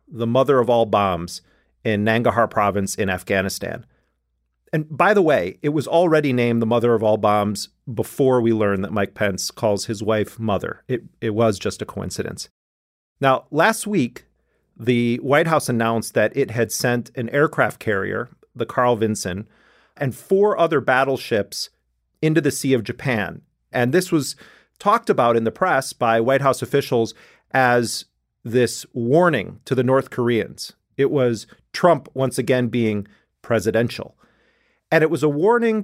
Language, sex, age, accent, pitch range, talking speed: English, male, 40-59, American, 110-140 Hz, 160 wpm